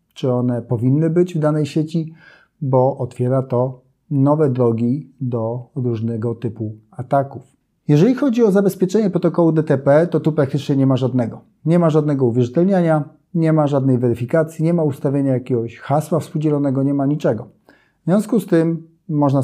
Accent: native